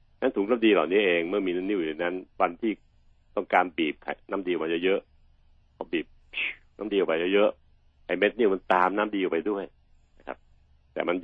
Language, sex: Thai, male